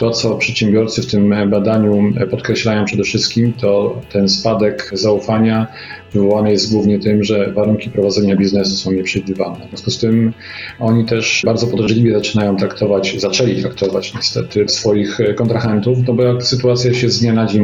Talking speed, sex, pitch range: 160 wpm, male, 100-115 Hz